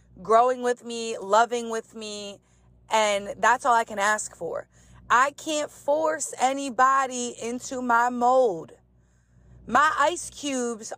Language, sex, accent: English, female, American